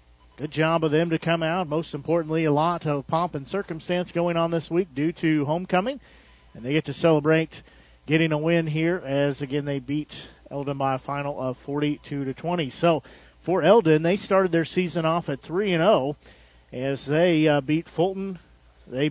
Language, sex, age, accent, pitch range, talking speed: English, male, 40-59, American, 135-165 Hz, 185 wpm